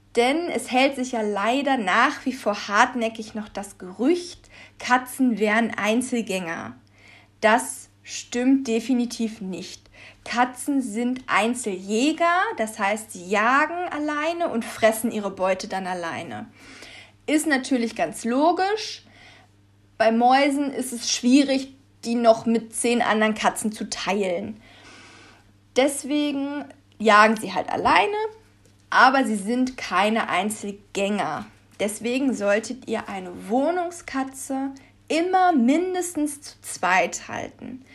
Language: German